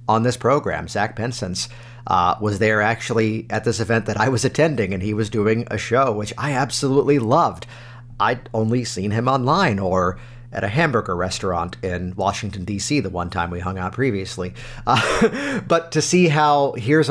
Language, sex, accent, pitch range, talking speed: English, male, American, 115-145 Hz, 180 wpm